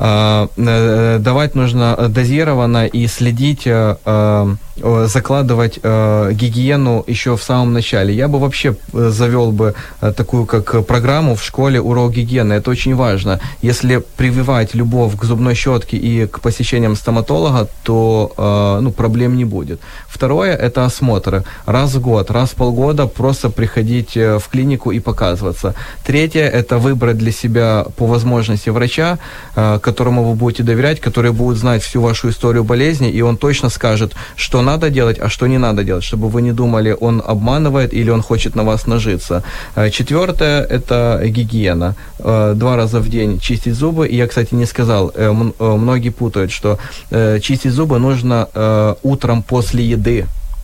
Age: 20-39